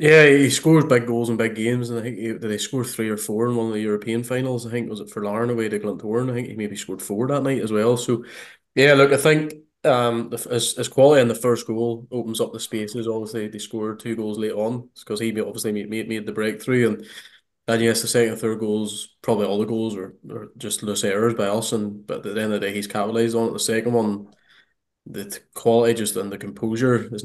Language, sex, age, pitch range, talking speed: English, male, 20-39, 105-120 Hz, 260 wpm